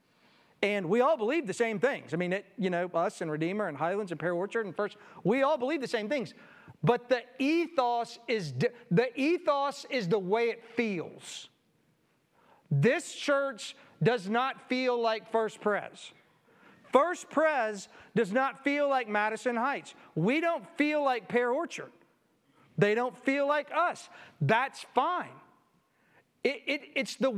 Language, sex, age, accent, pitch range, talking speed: English, male, 40-59, American, 215-280 Hz, 160 wpm